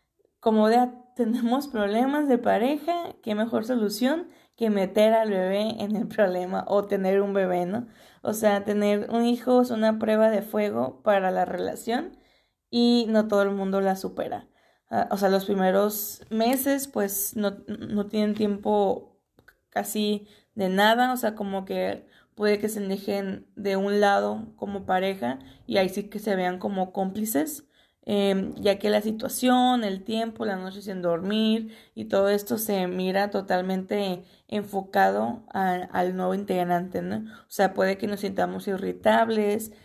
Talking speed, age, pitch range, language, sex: 155 wpm, 20-39, 195-225 Hz, Spanish, female